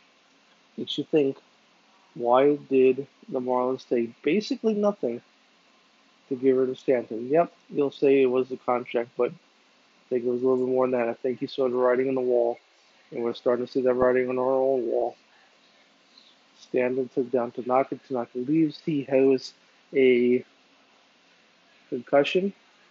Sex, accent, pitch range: male, American, 125-140 Hz